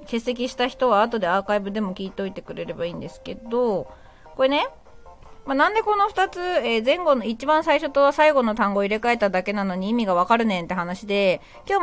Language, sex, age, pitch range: Japanese, female, 20-39, 205-285 Hz